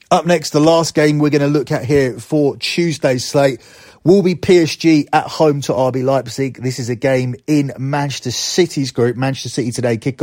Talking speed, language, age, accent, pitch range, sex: 200 wpm, English, 30-49, British, 130-155 Hz, male